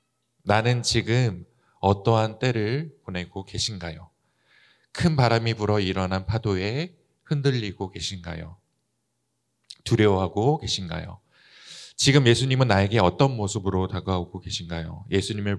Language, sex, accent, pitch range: Korean, male, native, 95-125 Hz